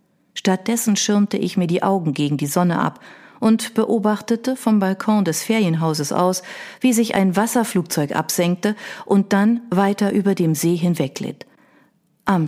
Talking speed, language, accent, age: 145 wpm, German, German, 40-59